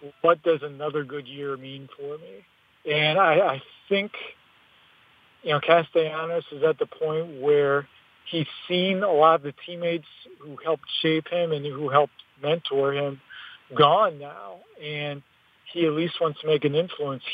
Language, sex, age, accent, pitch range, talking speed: English, male, 50-69, American, 140-165 Hz, 165 wpm